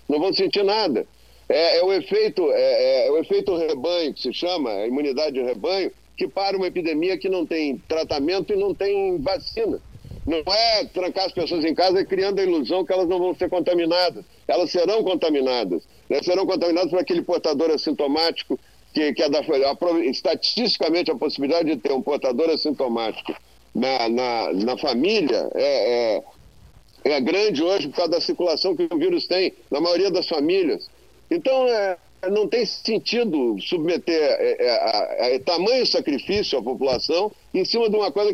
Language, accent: Portuguese, Brazilian